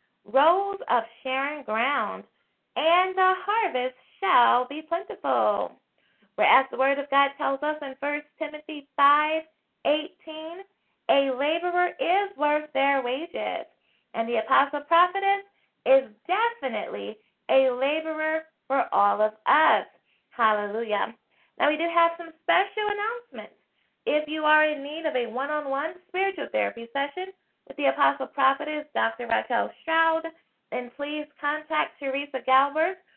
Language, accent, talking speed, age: English, American, 130 wpm, 20-39